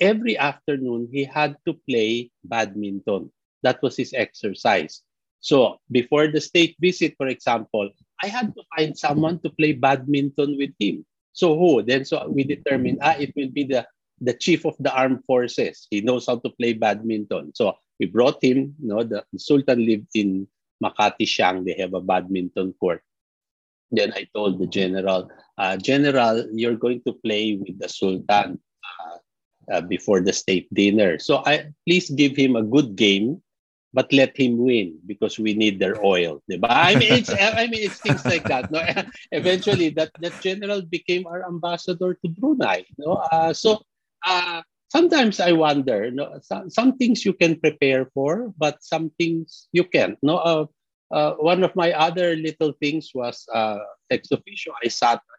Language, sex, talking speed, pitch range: English, male, 175 wpm, 115-170 Hz